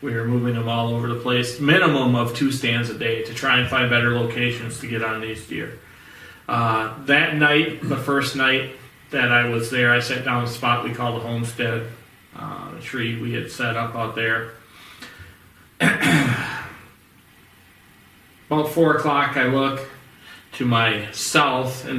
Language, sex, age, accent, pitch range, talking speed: English, male, 30-49, American, 110-130 Hz, 165 wpm